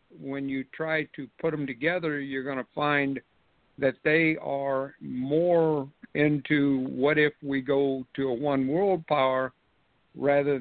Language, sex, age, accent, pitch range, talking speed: English, male, 60-79, American, 130-145 Hz, 145 wpm